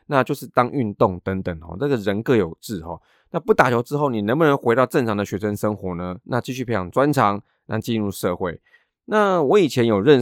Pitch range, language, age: 100-135 Hz, Chinese, 20-39